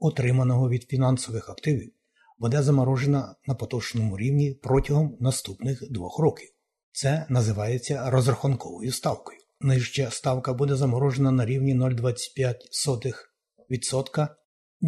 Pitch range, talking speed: 125-145 Hz, 95 wpm